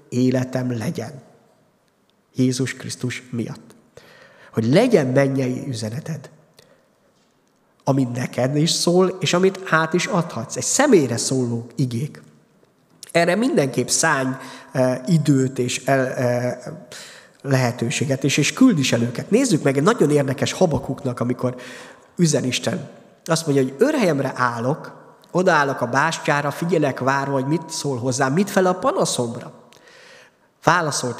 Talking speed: 125 wpm